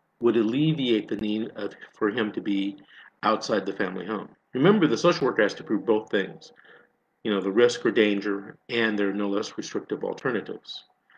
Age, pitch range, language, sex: 50-69, 100-120 Hz, English, male